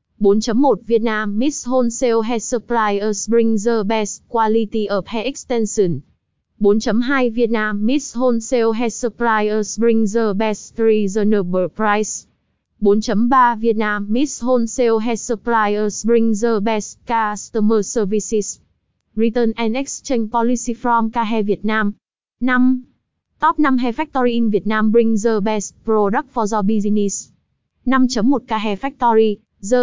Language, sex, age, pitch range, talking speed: Vietnamese, female, 20-39, 215-245 Hz, 130 wpm